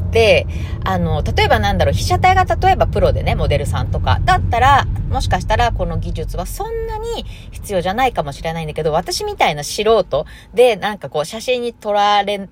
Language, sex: Japanese, female